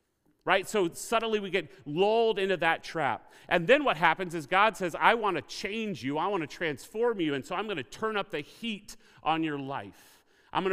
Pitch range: 135-185 Hz